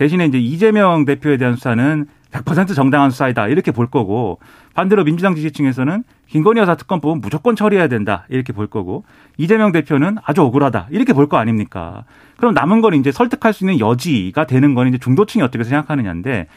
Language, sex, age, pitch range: Korean, male, 40-59, 125-195 Hz